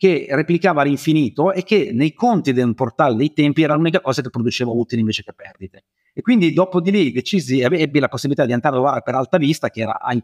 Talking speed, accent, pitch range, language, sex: 230 wpm, native, 120-165 Hz, Italian, male